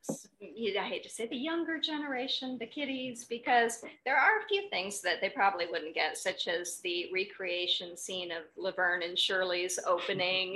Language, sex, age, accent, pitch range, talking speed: English, female, 50-69, American, 180-265 Hz, 170 wpm